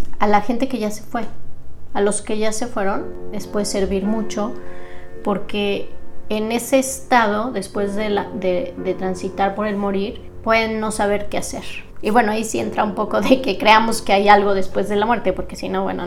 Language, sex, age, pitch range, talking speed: Spanish, female, 30-49, 195-225 Hz, 210 wpm